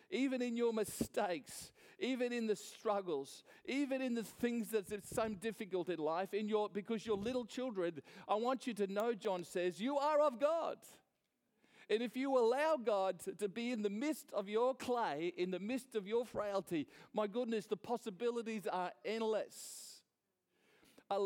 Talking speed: 170 wpm